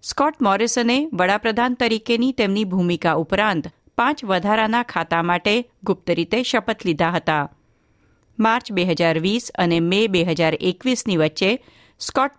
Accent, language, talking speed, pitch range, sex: native, Gujarati, 105 wpm, 175-235 Hz, female